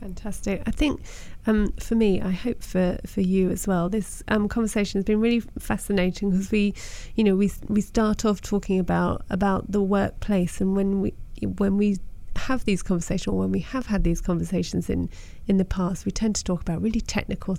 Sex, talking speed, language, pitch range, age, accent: female, 200 wpm, English, 185-205 Hz, 30-49, British